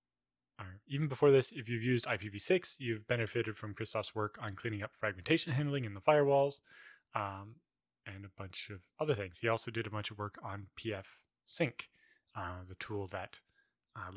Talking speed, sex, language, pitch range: 180 wpm, male, English, 100-125 Hz